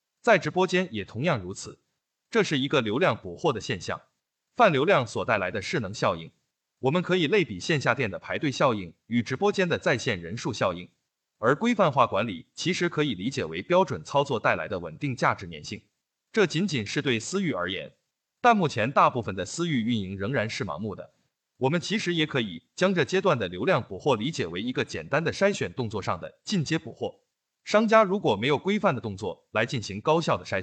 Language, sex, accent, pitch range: Chinese, male, native, 120-185 Hz